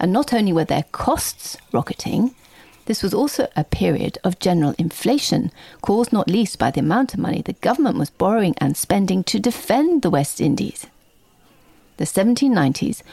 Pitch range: 170-240 Hz